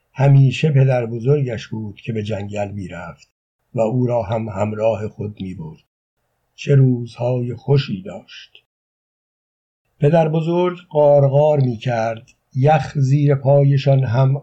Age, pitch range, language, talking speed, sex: 60-79, 120-140 Hz, Persian, 120 wpm, male